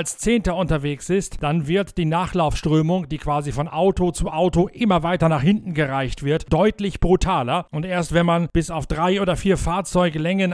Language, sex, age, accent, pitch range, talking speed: German, male, 40-59, German, 145-180 Hz, 180 wpm